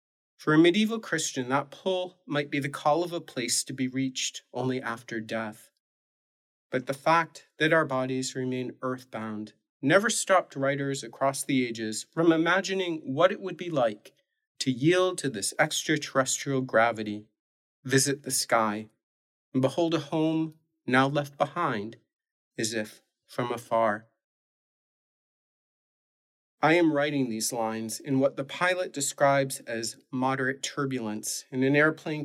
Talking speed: 140 wpm